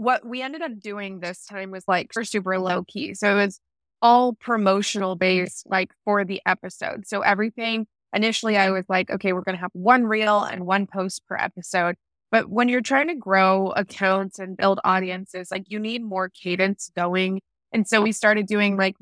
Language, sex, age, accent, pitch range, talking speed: English, female, 20-39, American, 190-215 Hz, 195 wpm